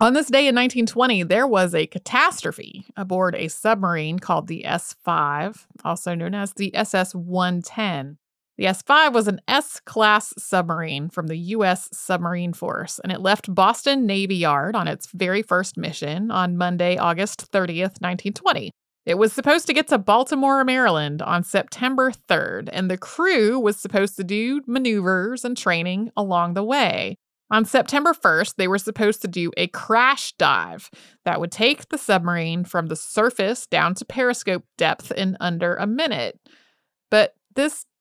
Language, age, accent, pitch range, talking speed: English, 30-49, American, 180-240 Hz, 160 wpm